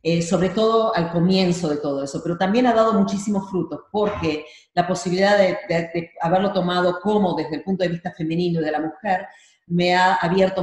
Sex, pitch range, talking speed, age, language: female, 160-190 Hz, 205 wpm, 40-59, Spanish